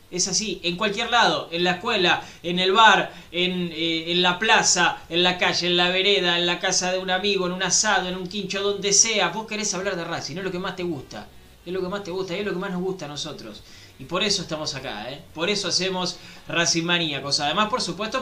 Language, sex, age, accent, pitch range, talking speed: Spanish, male, 20-39, Argentinian, 150-200 Hz, 255 wpm